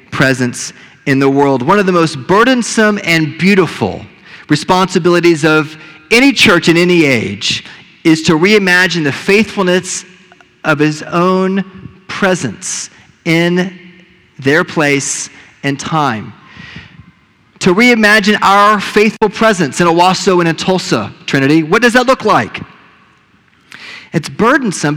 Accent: American